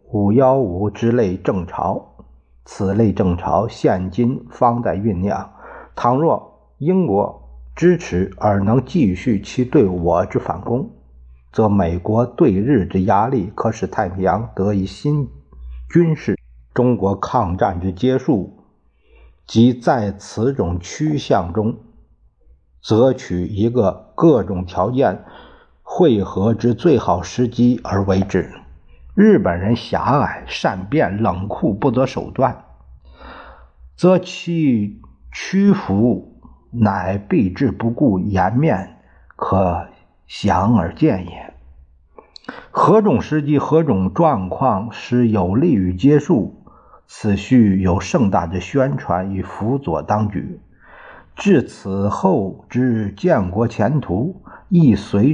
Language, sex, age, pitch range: Chinese, male, 50-69, 90-120 Hz